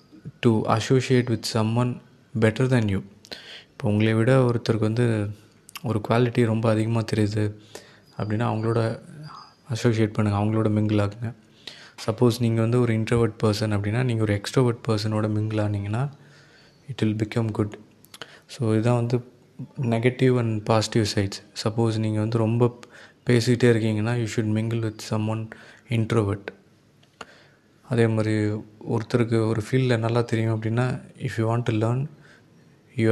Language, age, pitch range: Tamil, 20-39, 110-125 Hz